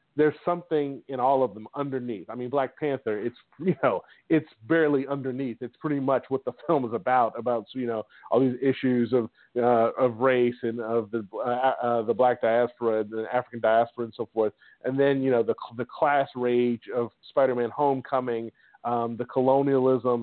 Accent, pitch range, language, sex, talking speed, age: American, 115-135 Hz, English, male, 190 wpm, 40-59